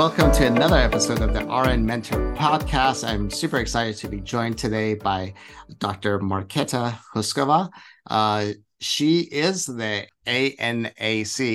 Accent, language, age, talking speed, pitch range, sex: American, English, 50-69, 130 wpm, 100-125 Hz, male